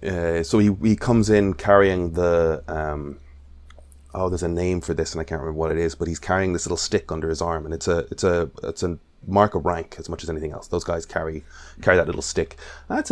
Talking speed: 245 wpm